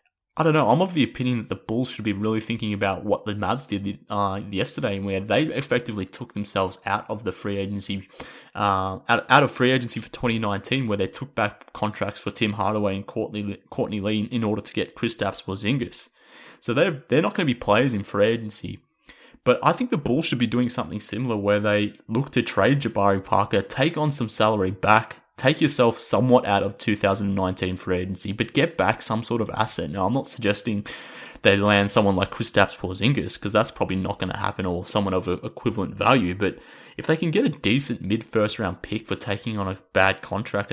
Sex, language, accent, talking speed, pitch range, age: male, English, Australian, 210 wpm, 95-115 Hz, 20-39